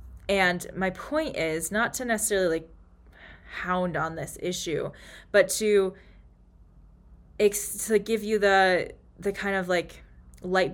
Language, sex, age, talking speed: English, female, 20-39, 130 wpm